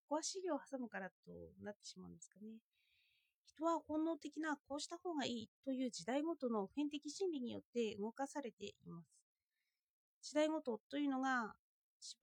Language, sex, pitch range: Japanese, female, 220-310 Hz